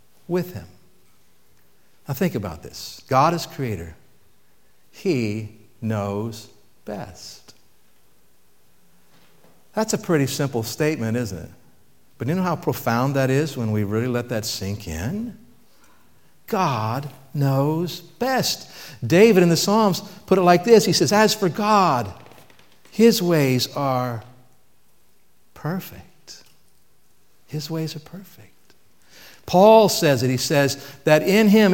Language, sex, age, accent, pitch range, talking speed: English, male, 60-79, American, 125-175 Hz, 125 wpm